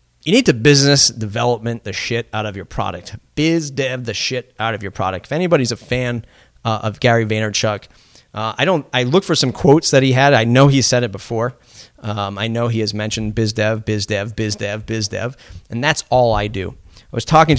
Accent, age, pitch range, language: American, 30-49, 105-130 Hz, English